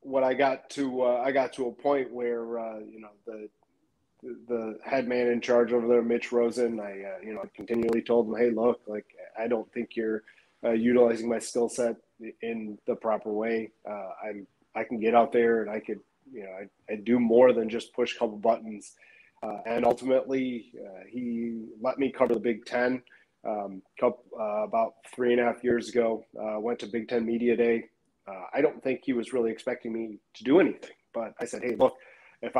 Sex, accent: male, American